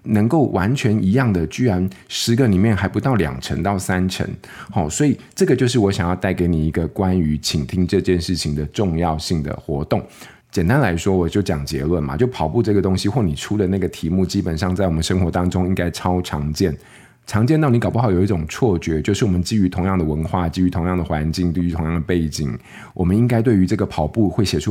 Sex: male